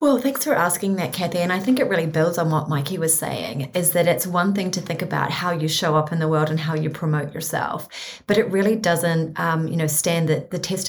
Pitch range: 160-180 Hz